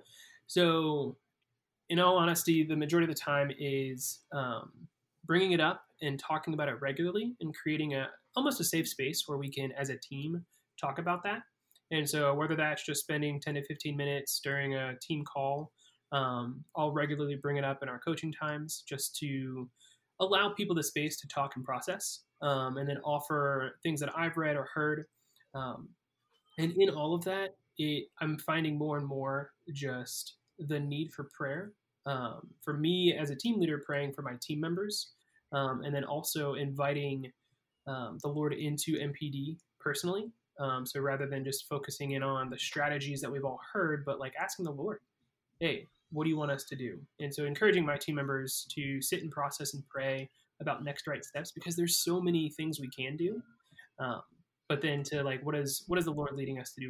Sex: male